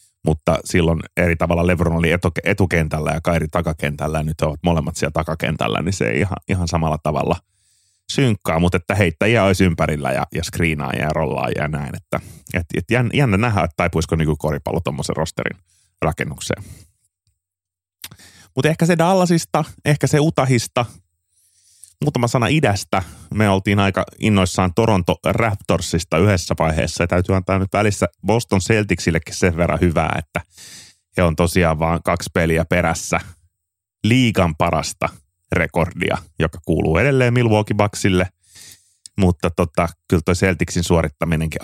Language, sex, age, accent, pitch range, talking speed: Finnish, male, 30-49, native, 80-100 Hz, 140 wpm